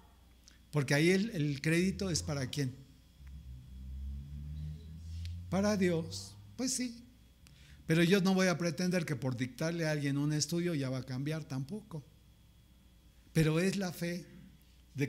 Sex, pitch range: male, 130-175 Hz